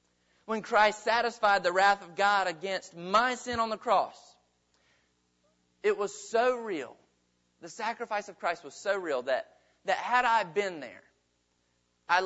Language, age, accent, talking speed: English, 40-59, American, 150 wpm